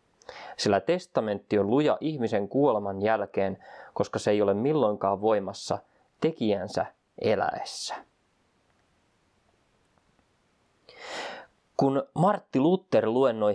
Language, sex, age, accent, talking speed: Finnish, male, 20-39, native, 85 wpm